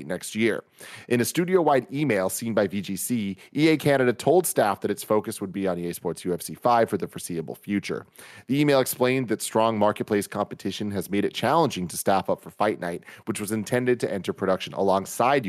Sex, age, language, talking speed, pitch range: male, 30-49, English, 195 wpm, 95-120 Hz